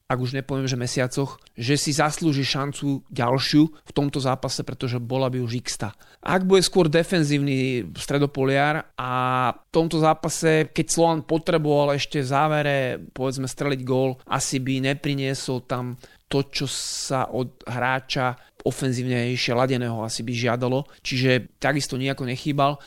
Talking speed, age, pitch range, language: 140 wpm, 30-49, 130-150 Hz, Slovak